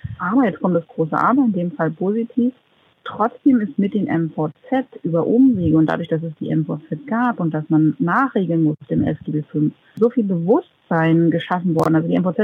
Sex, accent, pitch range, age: female, German, 155-195 Hz, 40-59